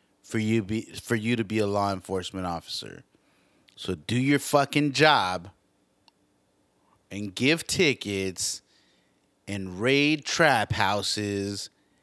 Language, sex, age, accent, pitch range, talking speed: English, male, 30-49, American, 95-130 Hz, 115 wpm